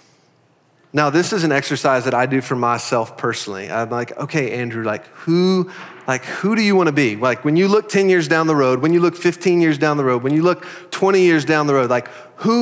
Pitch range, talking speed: 125-160 Hz, 240 wpm